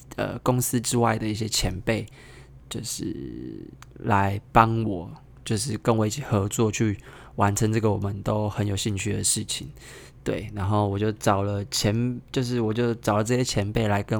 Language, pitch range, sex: Chinese, 105-130 Hz, male